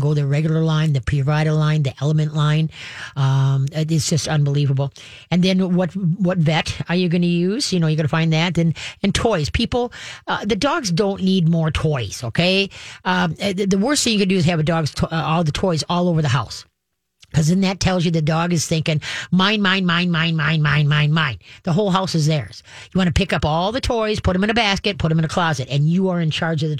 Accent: American